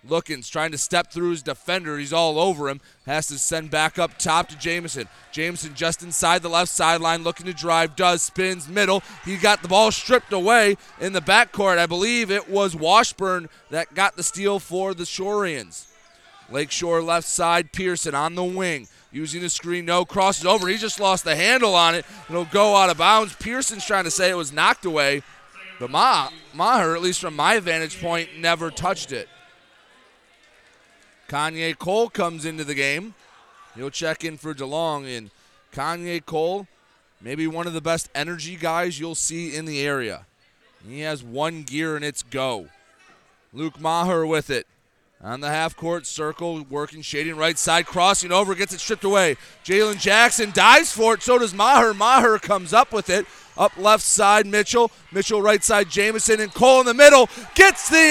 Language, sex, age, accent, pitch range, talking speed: English, male, 30-49, American, 160-205 Hz, 180 wpm